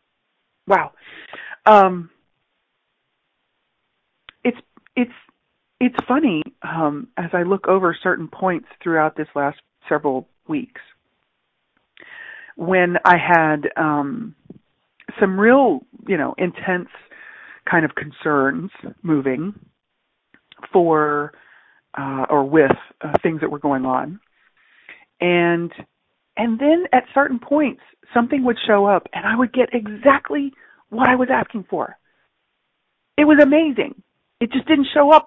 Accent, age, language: American, 40-59, English